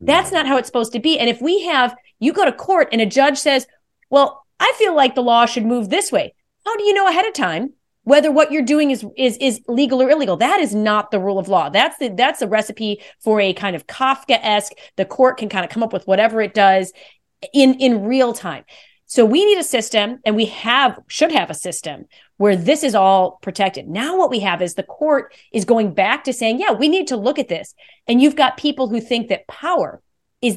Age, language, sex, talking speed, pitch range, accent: 30-49, English, female, 245 wpm, 195-270 Hz, American